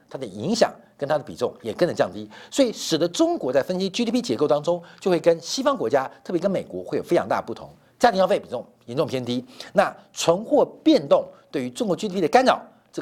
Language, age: Chinese, 50-69